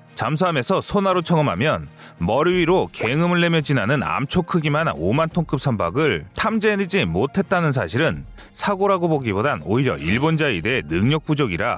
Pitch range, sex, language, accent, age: 145-190 Hz, male, Korean, native, 30-49